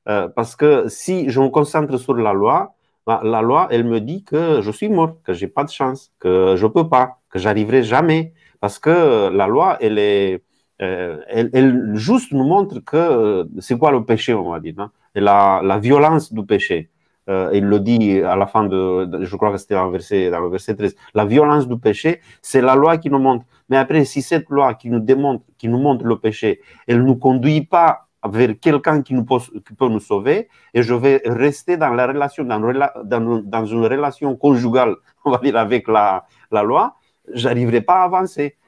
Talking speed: 220 wpm